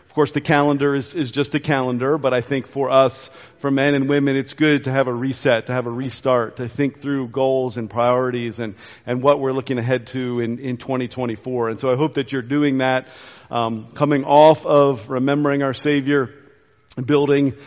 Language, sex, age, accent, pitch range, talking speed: English, male, 50-69, American, 130-150 Hz, 205 wpm